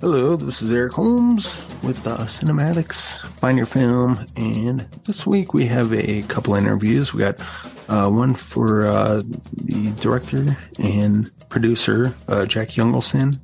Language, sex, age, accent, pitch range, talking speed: English, male, 20-39, American, 105-125 Hz, 145 wpm